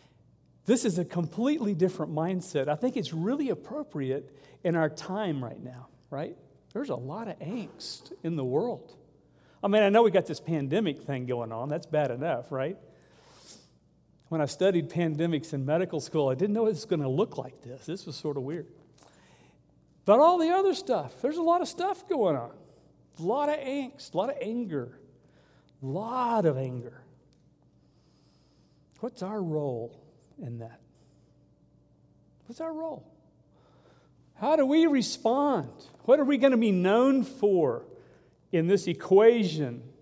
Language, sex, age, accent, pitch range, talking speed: English, male, 50-69, American, 140-230 Hz, 165 wpm